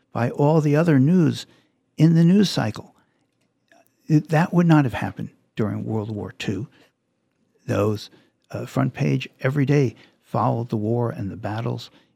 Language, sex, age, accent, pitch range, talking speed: English, male, 60-79, American, 110-145 Hz, 155 wpm